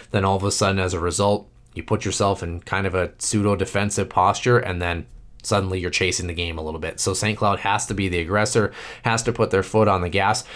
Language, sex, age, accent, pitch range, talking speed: English, male, 30-49, American, 90-115 Hz, 245 wpm